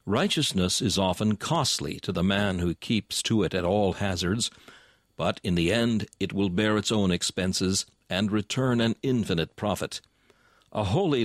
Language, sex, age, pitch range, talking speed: English, male, 60-79, 90-115 Hz, 165 wpm